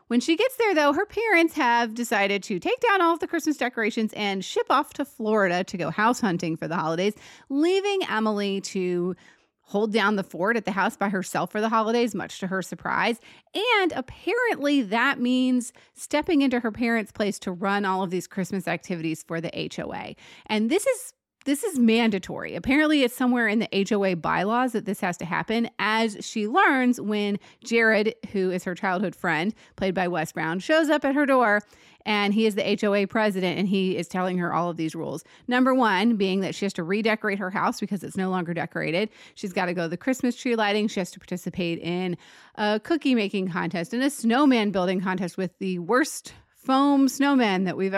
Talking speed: 205 wpm